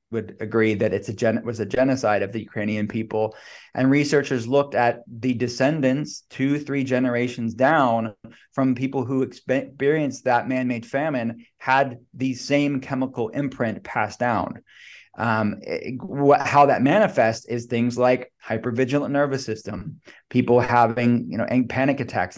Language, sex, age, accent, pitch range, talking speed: English, male, 20-39, American, 115-130 Hz, 150 wpm